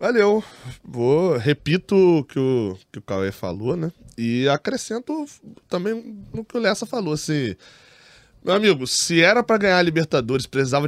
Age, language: 20-39, Portuguese